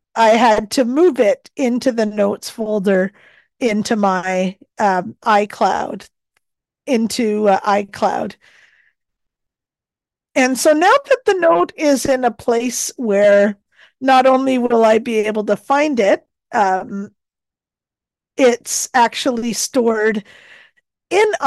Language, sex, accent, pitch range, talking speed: English, female, American, 210-265 Hz, 115 wpm